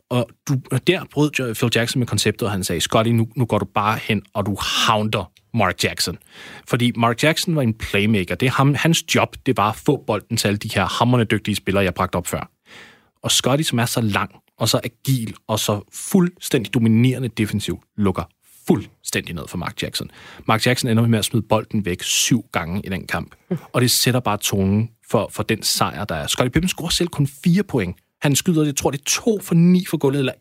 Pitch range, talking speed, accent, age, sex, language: 110-145 Hz, 225 wpm, native, 30-49, male, Danish